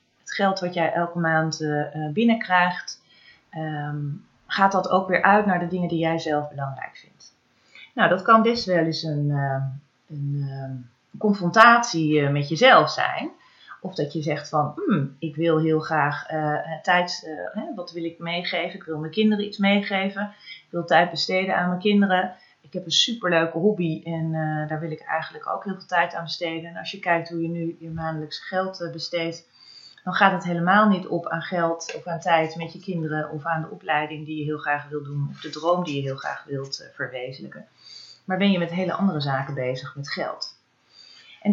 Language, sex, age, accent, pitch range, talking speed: Dutch, female, 30-49, Dutch, 155-195 Hz, 200 wpm